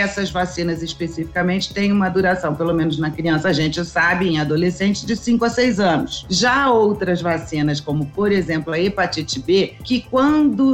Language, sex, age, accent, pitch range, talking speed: Portuguese, female, 40-59, Brazilian, 175-225 Hz, 175 wpm